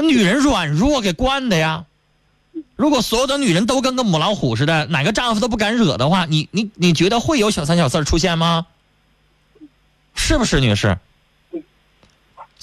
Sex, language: male, Chinese